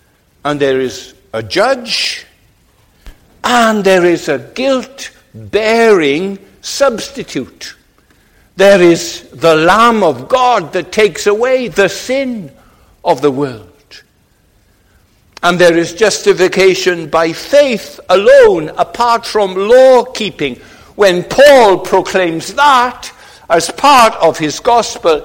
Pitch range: 160-245 Hz